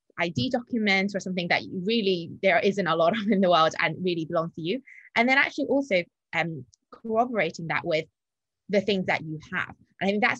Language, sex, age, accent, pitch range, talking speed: English, female, 20-39, British, 165-205 Hz, 215 wpm